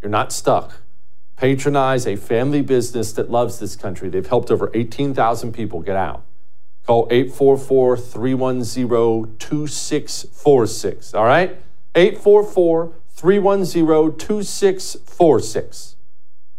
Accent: American